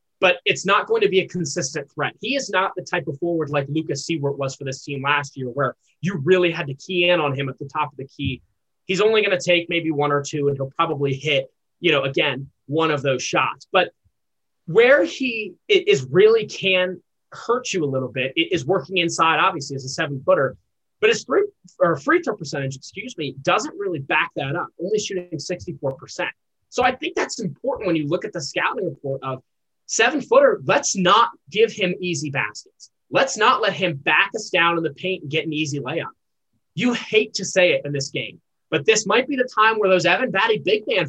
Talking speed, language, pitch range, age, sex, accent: 220 wpm, English, 145-195 Hz, 20-39, male, American